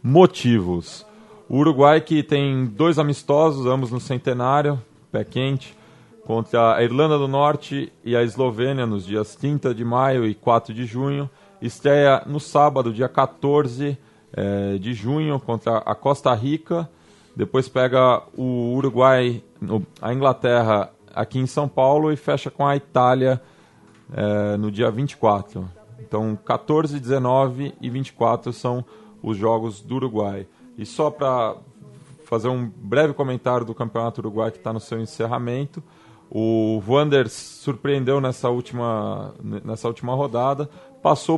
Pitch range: 110-140 Hz